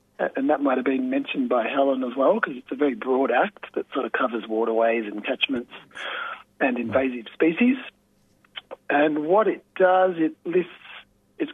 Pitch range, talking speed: 135-225 Hz, 170 wpm